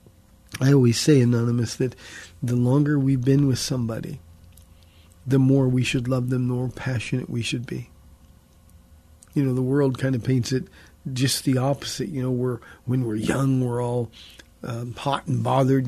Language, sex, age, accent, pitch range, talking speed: English, male, 40-59, American, 120-150 Hz, 175 wpm